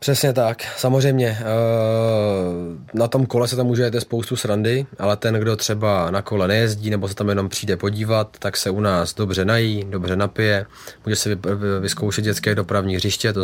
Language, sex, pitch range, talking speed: Czech, male, 95-105 Hz, 180 wpm